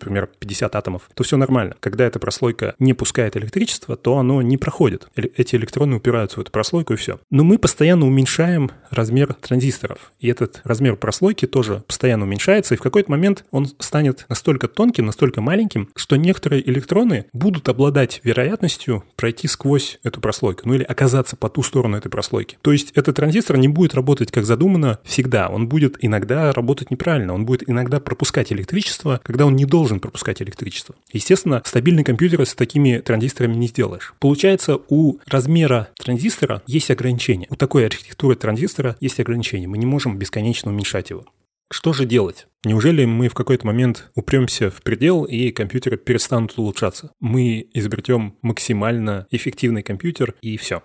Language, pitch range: Russian, 115-140 Hz